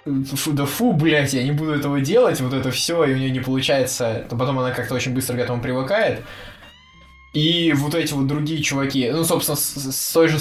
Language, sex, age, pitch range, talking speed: Russian, male, 20-39, 115-150 Hz, 210 wpm